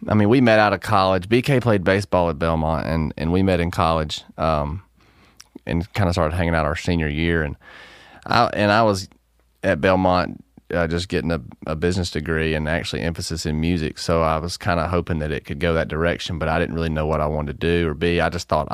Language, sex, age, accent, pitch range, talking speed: English, male, 30-49, American, 80-95 Hz, 235 wpm